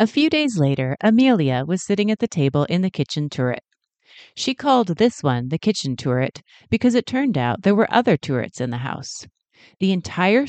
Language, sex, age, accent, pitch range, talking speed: English, female, 40-59, American, 140-225 Hz, 195 wpm